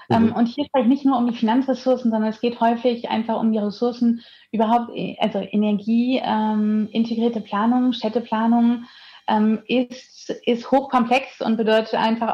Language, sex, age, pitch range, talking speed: German, female, 30-49, 215-245 Hz, 150 wpm